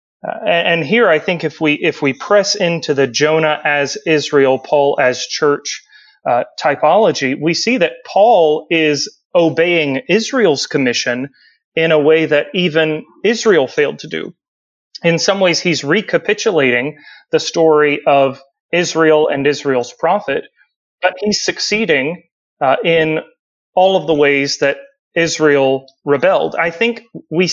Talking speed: 135 wpm